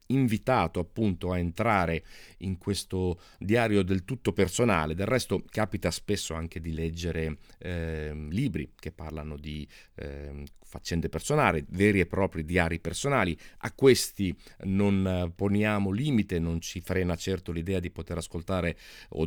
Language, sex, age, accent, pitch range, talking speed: Italian, male, 40-59, native, 85-105 Hz, 135 wpm